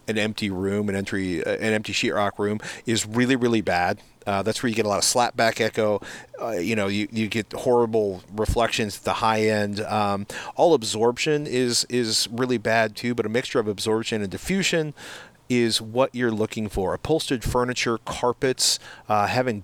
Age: 40-59